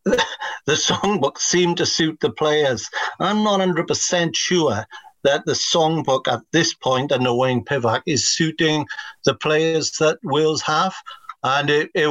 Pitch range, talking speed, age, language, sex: 125-165 Hz, 150 wpm, 50-69, English, male